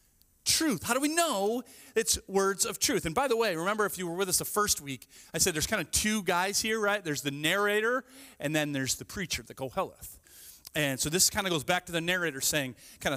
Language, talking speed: English, 240 wpm